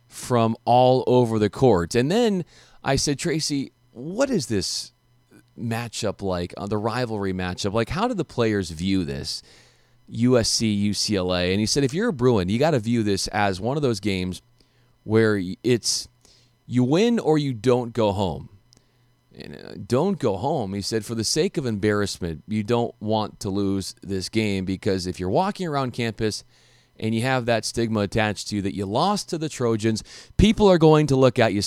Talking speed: 190 wpm